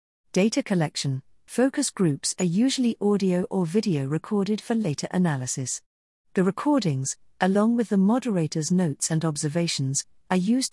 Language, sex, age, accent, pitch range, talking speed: English, female, 50-69, British, 155-220 Hz, 135 wpm